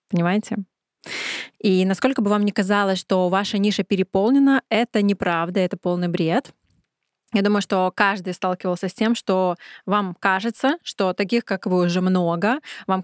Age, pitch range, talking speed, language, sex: 20-39, 190-230 Hz, 150 wpm, Russian, female